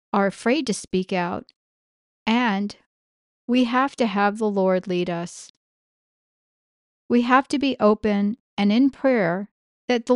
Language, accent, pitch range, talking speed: English, American, 190-240 Hz, 140 wpm